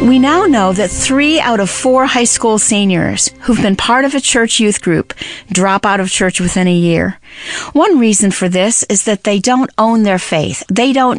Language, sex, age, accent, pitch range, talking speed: English, female, 40-59, American, 185-245 Hz, 210 wpm